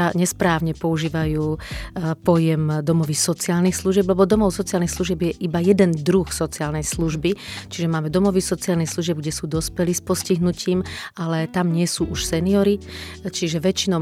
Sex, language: female, Slovak